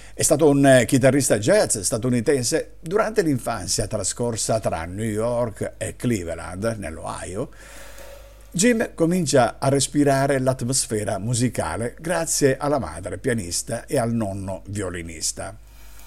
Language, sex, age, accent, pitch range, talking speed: Italian, male, 50-69, native, 105-145 Hz, 110 wpm